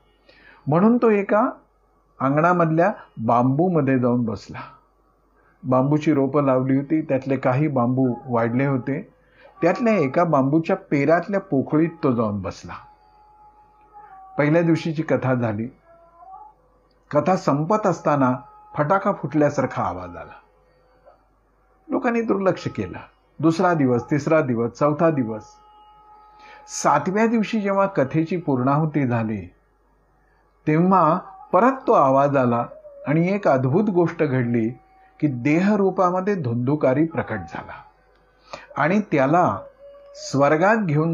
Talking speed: 95 wpm